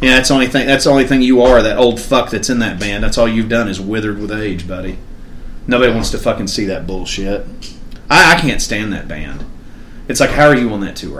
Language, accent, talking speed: English, American, 255 wpm